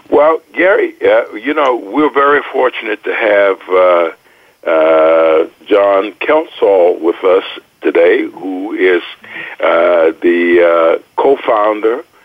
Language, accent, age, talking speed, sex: English, American, 60-79, 115 wpm, male